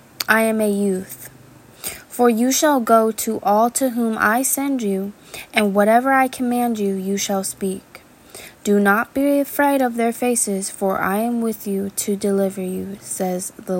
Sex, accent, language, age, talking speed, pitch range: female, American, English, 20-39, 175 wpm, 200-240 Hz